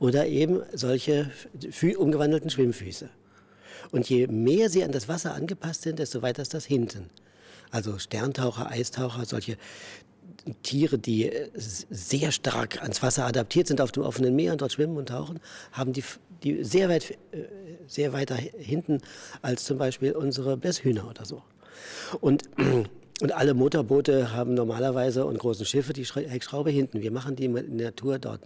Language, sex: German, male